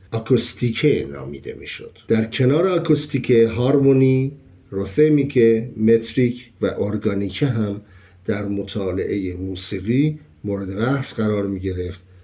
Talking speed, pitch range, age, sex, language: 100 wpm, 95-135 Hz, 50-69, male, Persian